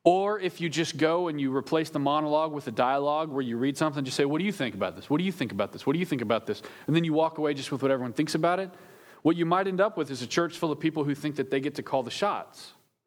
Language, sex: English, male